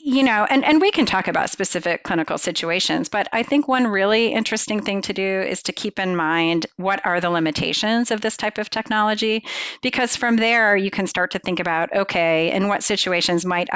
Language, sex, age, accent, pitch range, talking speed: English, female, 40-59, American, 165-210 Hz, 210 wpm